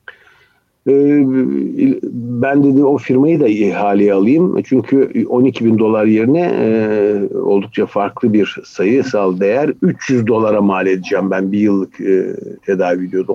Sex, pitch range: male, 100-125 Hz